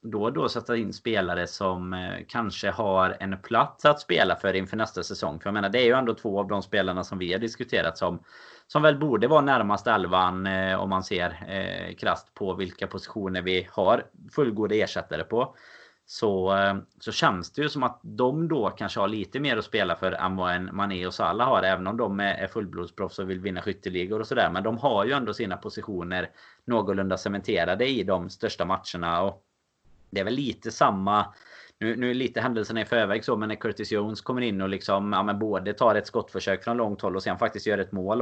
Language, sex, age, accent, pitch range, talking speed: Swedish, male, 30-49, native, 95-115 Hz, 215 wpm